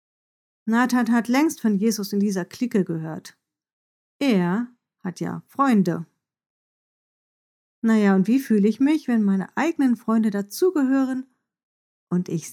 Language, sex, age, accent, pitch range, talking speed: German, female, 50-69, German, 190-270 Hz, 125 wpm